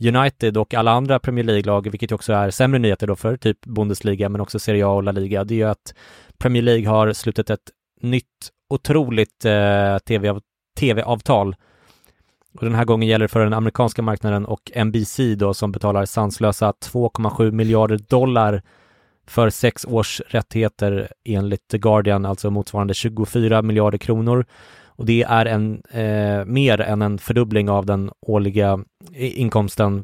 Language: English